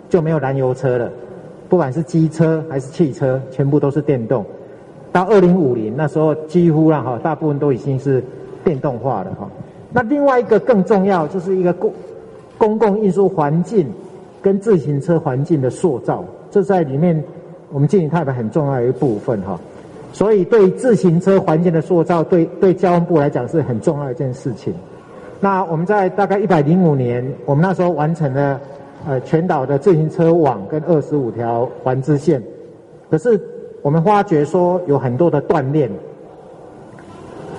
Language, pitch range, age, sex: Chinese, 145-180 Hz, 50-69, male